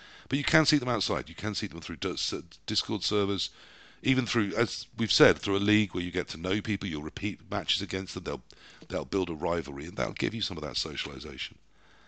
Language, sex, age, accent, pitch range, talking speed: English, male, 50-69, British, 85-120 Hz, 225 wpm